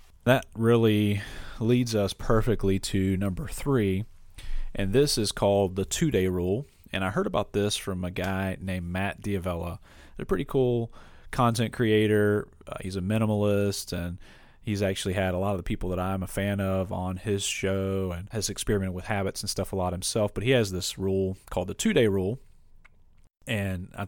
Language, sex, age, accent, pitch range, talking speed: English, male, 30-49, American, 90-105 Hz, 180 wpm